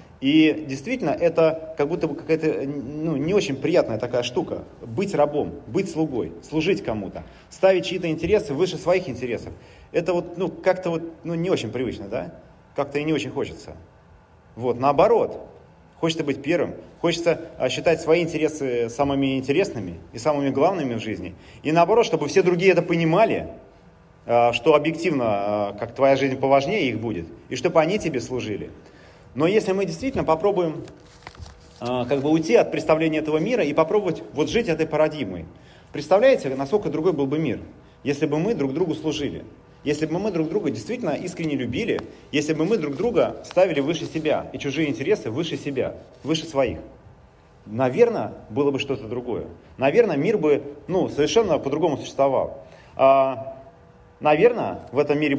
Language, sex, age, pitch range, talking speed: Russian, male, 30-49, 135-170 Hz, 155 wpm